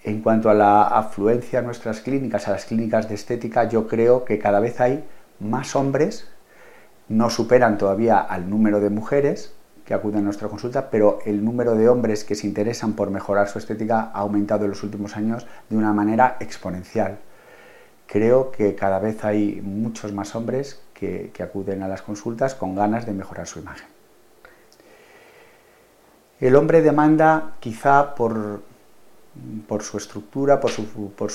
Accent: Spanish